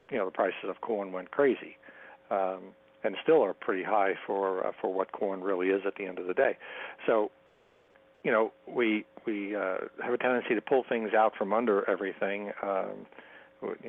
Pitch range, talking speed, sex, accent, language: 100-110 Hz, 190 wpm, male, American, English